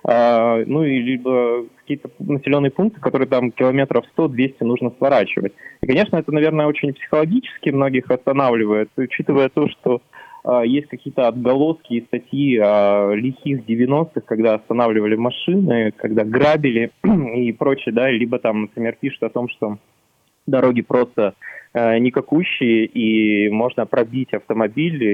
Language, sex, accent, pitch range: Russian, male, native, 115-135 Hz